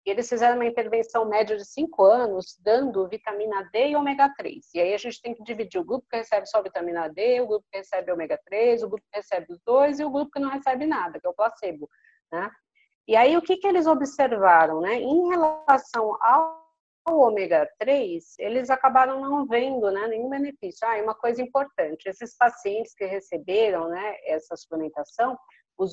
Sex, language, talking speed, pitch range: female, Portuguese, 200 wpm, 205-270 Hz